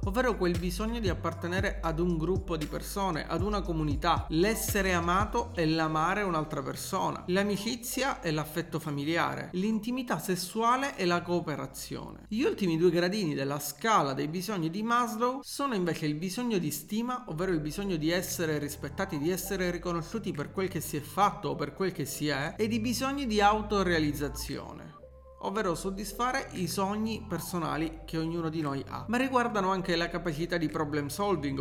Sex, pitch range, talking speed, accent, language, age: male, 155-210 Hz, 165 wpm, native, Italian, 40-59